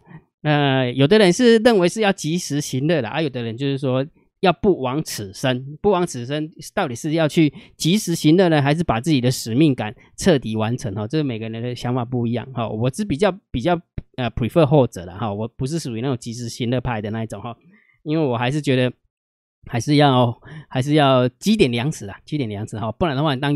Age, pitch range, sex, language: 20-39, 125-175 Hz, male, Chinese